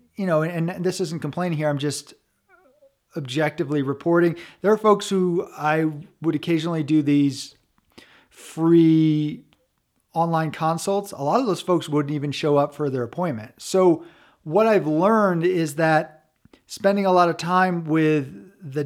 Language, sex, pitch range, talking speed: English, male, 140-175 Hz, 155 wpm